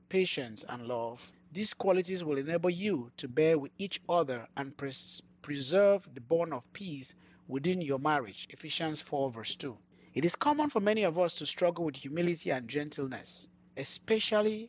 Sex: male